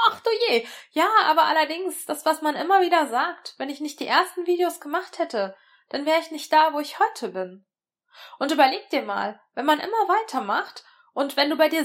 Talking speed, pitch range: 215 wpm, 235-345 Hz